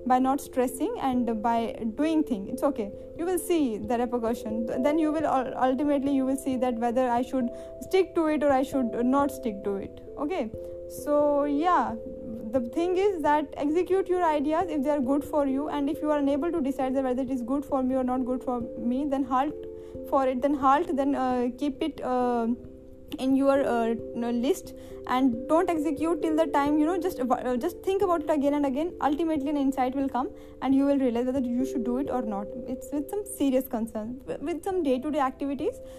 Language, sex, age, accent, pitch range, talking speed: Hindi, female, 20-39, native, 250-300 Hz, 215 wpm